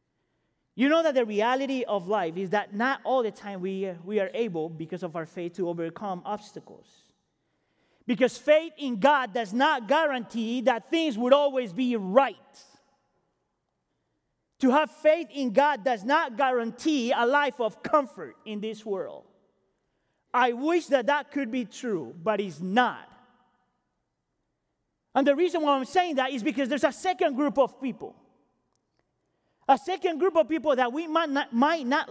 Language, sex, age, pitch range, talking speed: English, male, 30-49, 230-295 Hz, 165 wpm